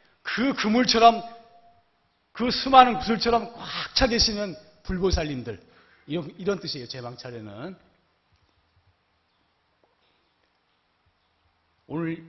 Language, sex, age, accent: Korean, male, 40-59, native